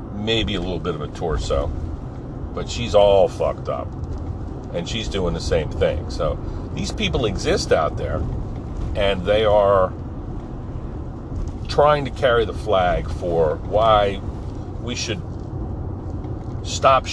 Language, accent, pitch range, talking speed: English, American, 95-110 Hz, 130 wpm